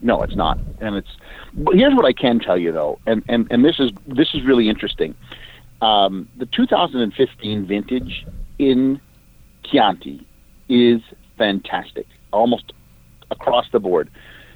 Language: English